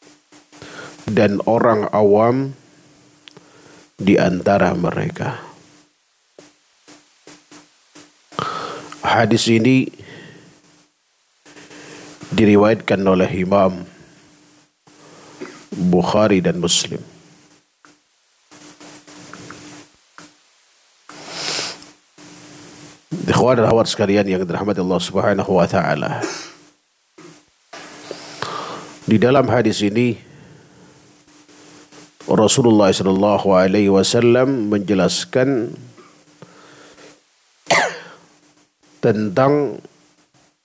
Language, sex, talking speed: Indonesian, male, 45 wpm